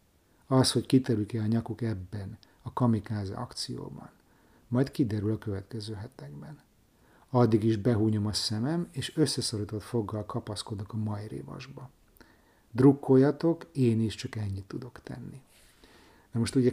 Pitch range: 105-125 Hz